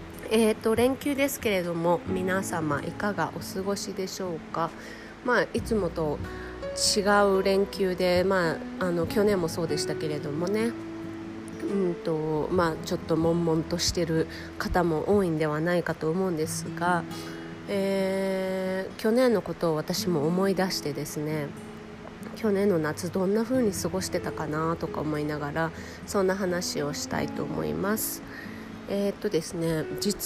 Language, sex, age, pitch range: Japanese, female, 30-49, 160-195 Hz